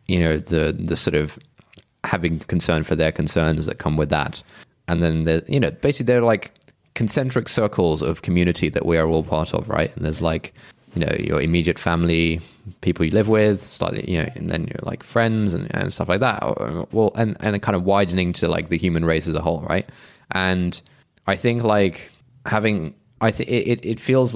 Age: 20-39